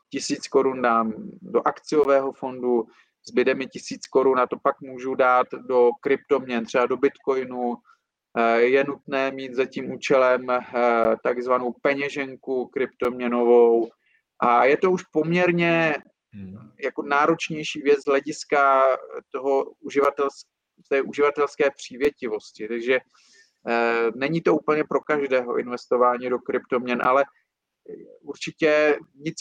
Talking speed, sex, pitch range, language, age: 115 wpm, male, 125-140 Hz, Czech, 40-59